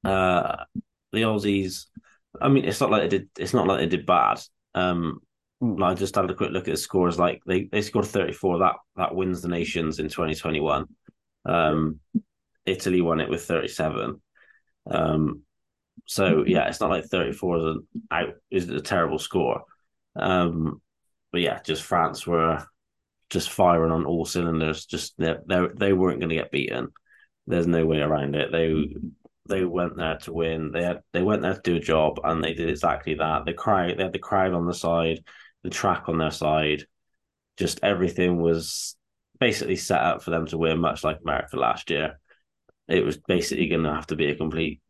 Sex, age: male, 20-39